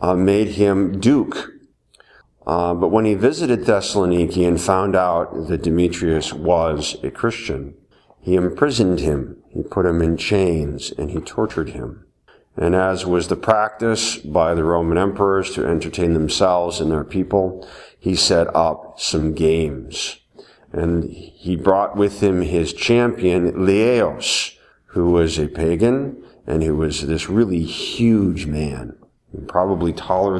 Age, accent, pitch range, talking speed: 50-69, American, 85-105 Hz, 140 wpm